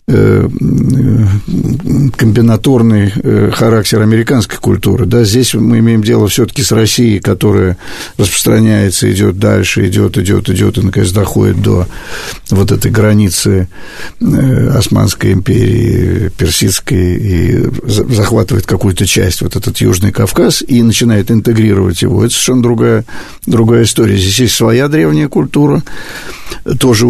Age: 50-69